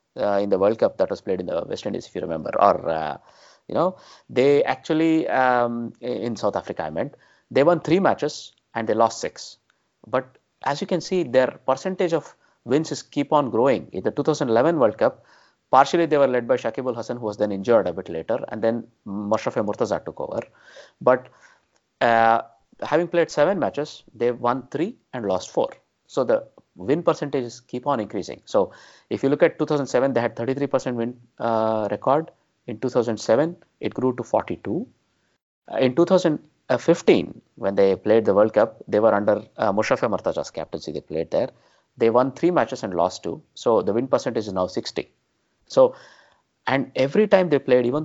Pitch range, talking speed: 115-155 Hz, 185 wpm